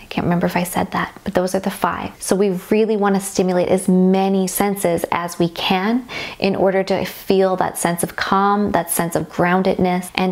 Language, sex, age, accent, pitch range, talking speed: English, female, 20-39, American, 180-200 Hz, 210 wpm